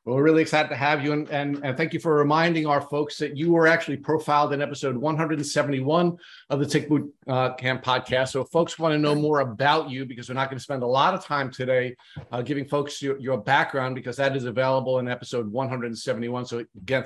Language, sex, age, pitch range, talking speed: English, male, 50-69, 130-155 Hz, 230 wpm